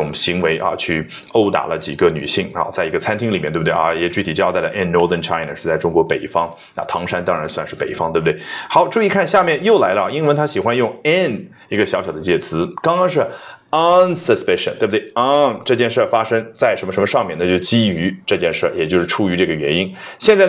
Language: Chinese